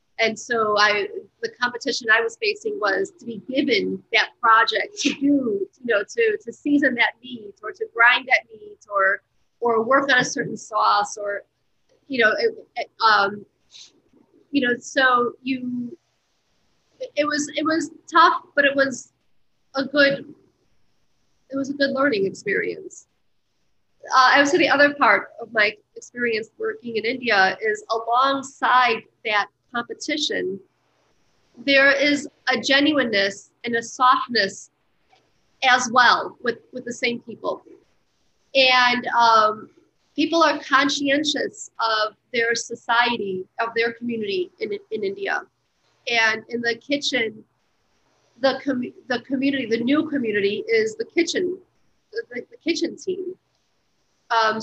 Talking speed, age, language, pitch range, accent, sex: 135 wpm, 40-59, English, 230-300 Hz, American, female